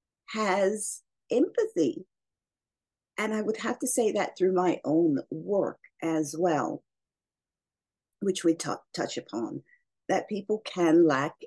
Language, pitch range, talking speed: English, 170-255 Hz, 120 wpm